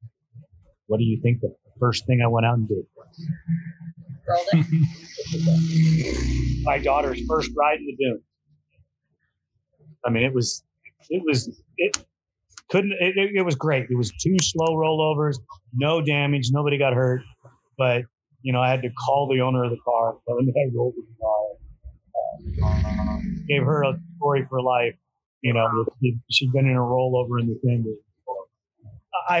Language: English